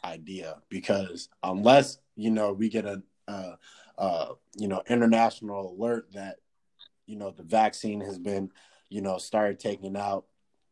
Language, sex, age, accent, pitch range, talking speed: English, male, 20-39, American, 100-110 Hz, 135 wpm